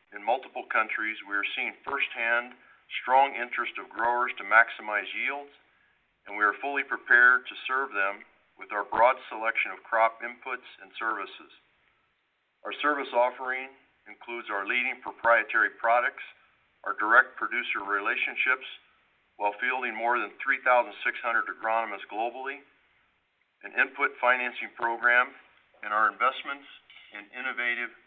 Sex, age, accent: male, 50-69, American